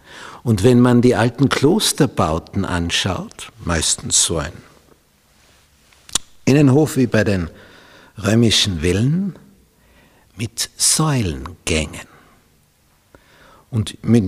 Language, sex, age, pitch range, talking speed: German, male, 60-79, 95-135 Hz, 85 wpm